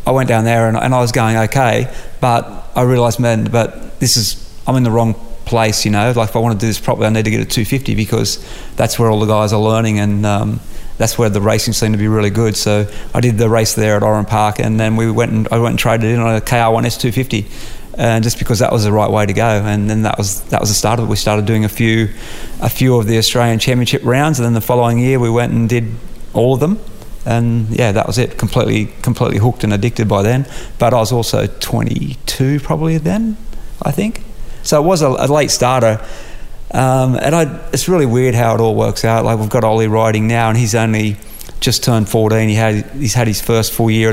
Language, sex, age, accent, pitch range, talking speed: English, male, 30-49, Australian, 110-125 Hz, 250 wpm